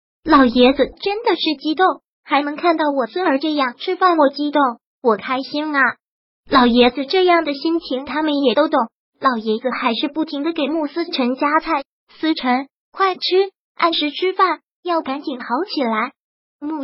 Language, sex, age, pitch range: Chinese, male, 20-39, 265-325 Hz